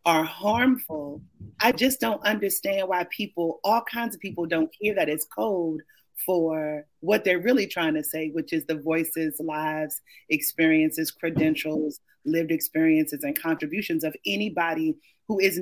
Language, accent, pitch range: English, American, 165-255 Hz